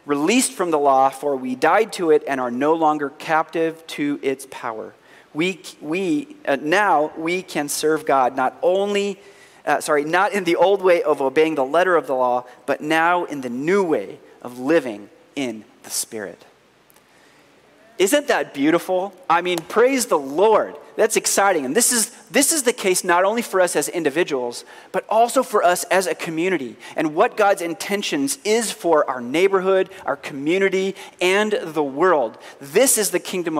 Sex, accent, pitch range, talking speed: male, American, 150-210 Hz, 175 wpm